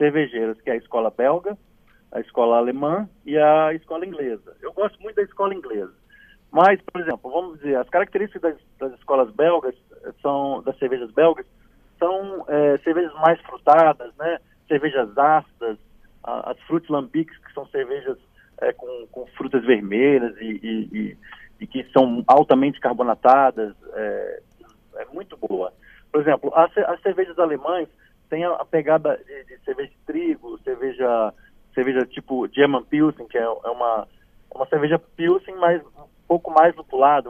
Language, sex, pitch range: Portuguese, male, 135-195 Hz